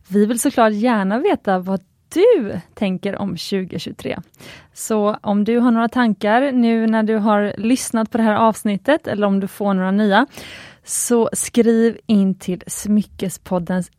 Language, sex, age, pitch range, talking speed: Swedish, female, 20-39, 190-240 Hz, 155 wpm